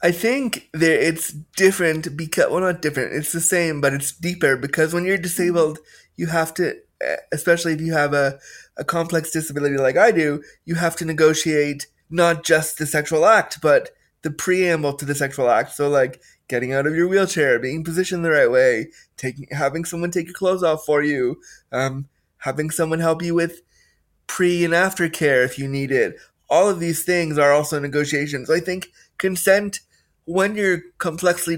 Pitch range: 145-170 Hz